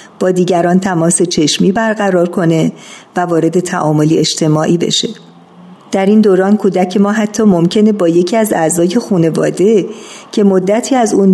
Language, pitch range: Persian, 175-215 Hz